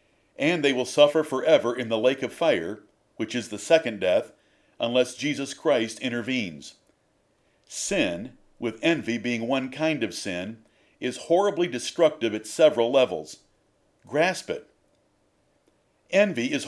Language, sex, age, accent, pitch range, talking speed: English, male, 50-69, American, 120-165 Hz, 135 wpm